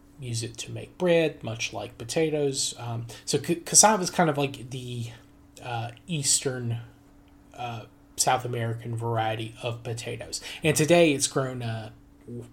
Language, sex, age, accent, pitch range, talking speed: English, male, 30-49, American, 115-135 Hz, 145 wpm